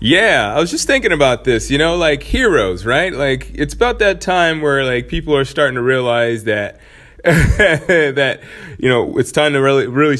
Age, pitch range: 30-49, 105-130 Hz